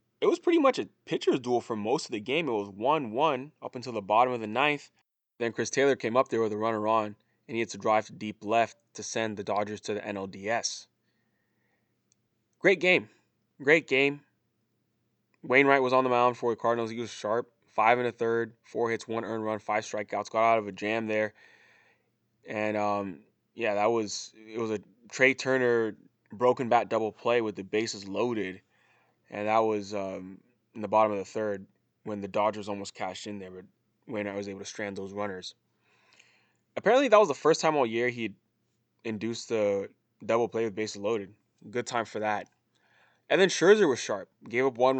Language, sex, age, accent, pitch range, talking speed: English, male, 20-39, American, 105-125 Hz, 200 wpm